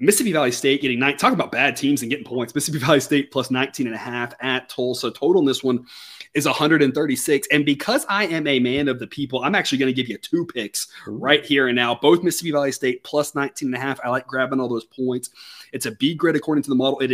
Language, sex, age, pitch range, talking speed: English, male, 30-49, 125-165 Hz, 235 wpm